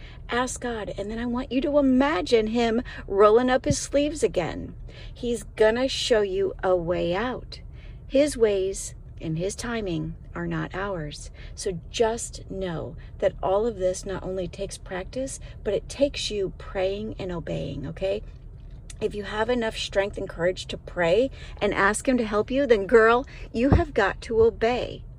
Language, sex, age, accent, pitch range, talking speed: English, female, 40-59, American, 185-240 Hz, 170 wpm